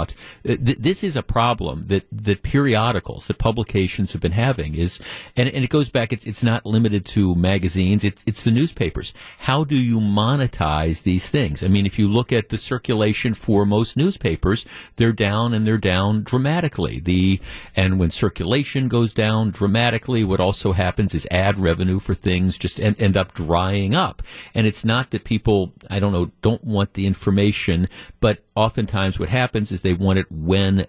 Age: 50-69